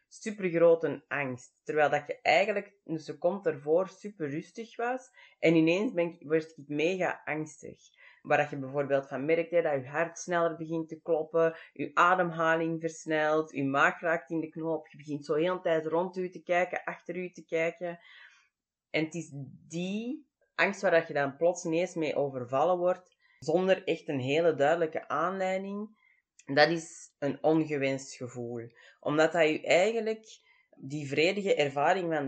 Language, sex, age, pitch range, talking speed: Dutch, female, 20-39, 145-180 Hz, 160 wpm